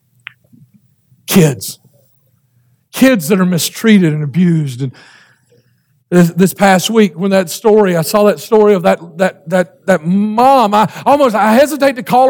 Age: 50-69